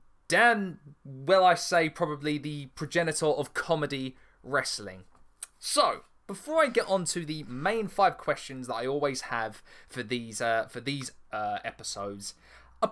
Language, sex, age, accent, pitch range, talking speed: English, male, 20-39, British, 125-185 Hz, 150 wpm